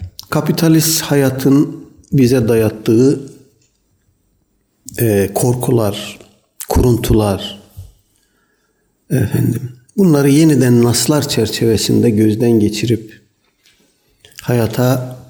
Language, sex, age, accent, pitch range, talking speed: Turkish, male, 60-79, native, 105-135 Hz, 55 wpm